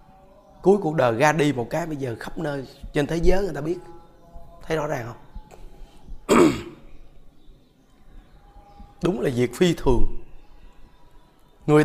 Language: Vietnamese